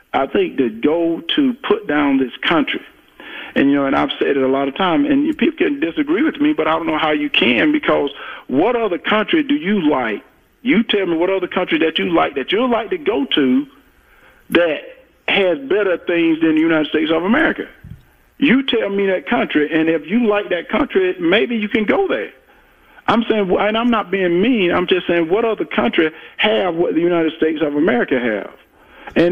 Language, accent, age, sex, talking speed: English, American, 50-69, male, 210 wpm